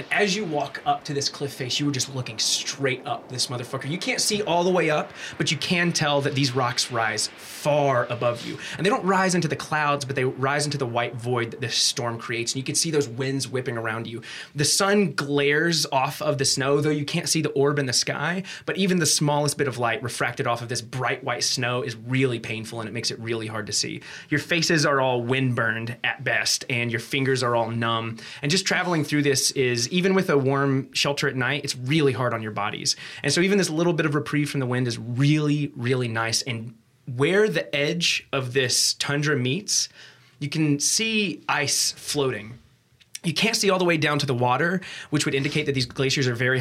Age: 20-39